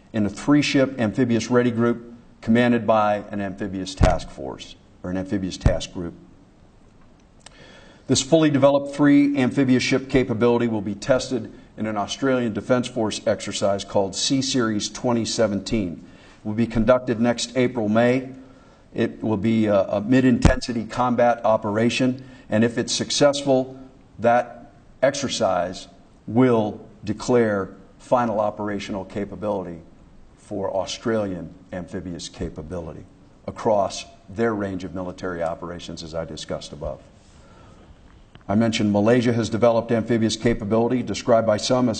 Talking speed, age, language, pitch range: 125 wpm, 50-69, English, 100-125 Hz